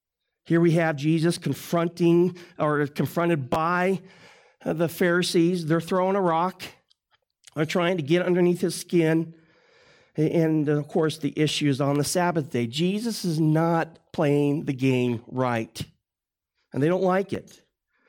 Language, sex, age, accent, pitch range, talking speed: English, male, 50-69, American, 155-185 Hz, 145 wpm